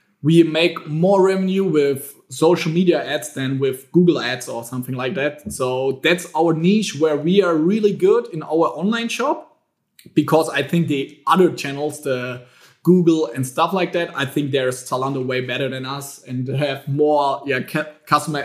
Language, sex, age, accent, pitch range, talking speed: English, male, 20-39, German, 140-175 Hz, 180 wpm